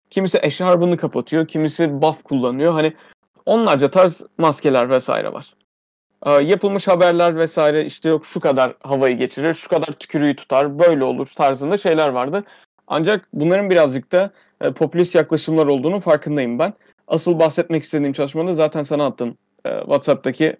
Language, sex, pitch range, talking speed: Turkish, male, 140-180 Hz, 145 wpm